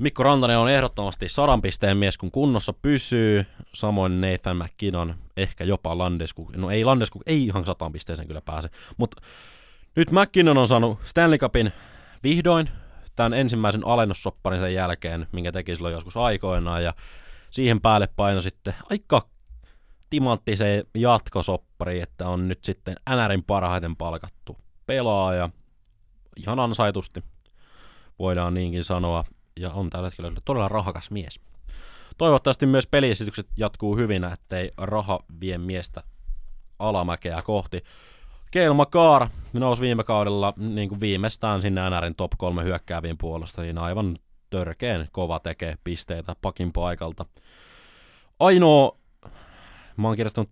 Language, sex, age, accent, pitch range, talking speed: Finnish, male, 20-39, native, 85-110 Hz, 125 wpm